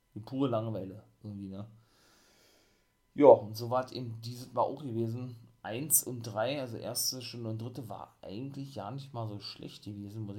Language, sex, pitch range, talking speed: German, male, 105-125 Hz, 185 wpm